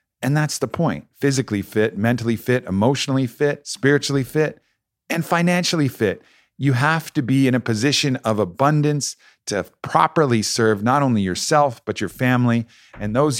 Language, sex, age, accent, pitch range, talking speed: English, male, 40-59, American, 105-130 Hz, 155 wpm